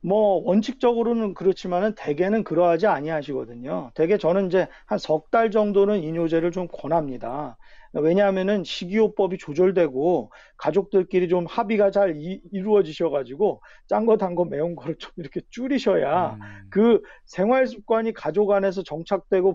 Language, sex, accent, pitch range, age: Korean, male, native, 160-200 Hz, 40-59